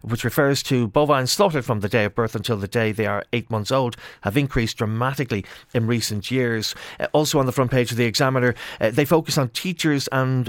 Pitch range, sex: 120-140 Hz, male